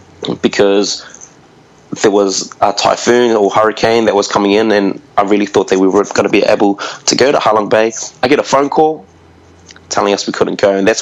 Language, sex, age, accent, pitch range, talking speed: English, male, 20-39, Australian, 95-105 Hz, 210 wpm